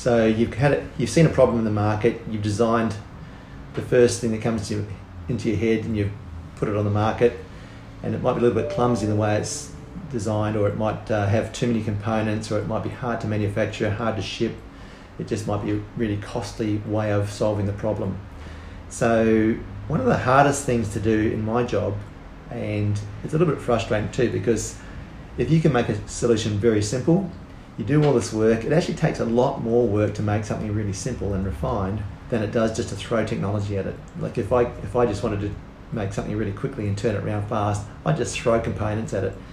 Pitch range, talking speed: 105-120 Hz, 230 wpm